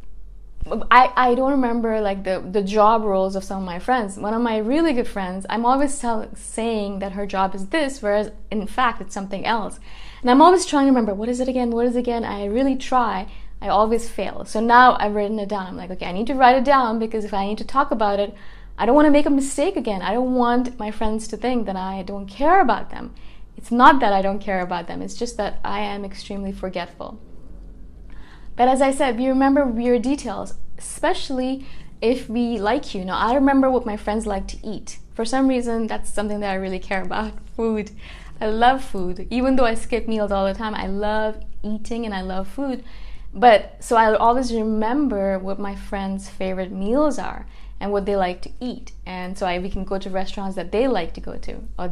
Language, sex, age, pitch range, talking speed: English, female, 20-39, 195-250 Hz, 225 wpm